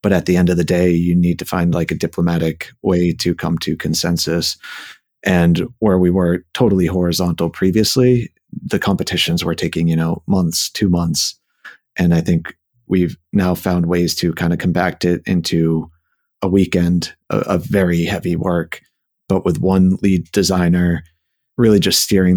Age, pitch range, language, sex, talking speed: 30-49, 85-95 Hz, English, male, 165 wpm